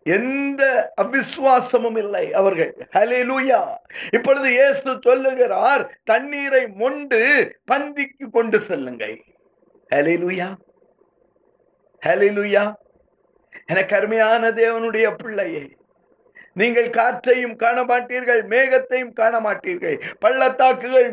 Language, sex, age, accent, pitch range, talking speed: Tamil, male, 50-69, native, 220-275 Hz, 50 wpm